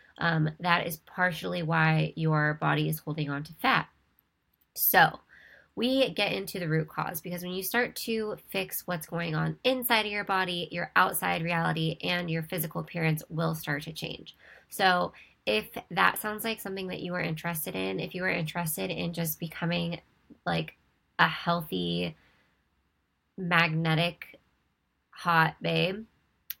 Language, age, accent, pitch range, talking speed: English, 20-39, American, 155-175 Hz, 150 wpm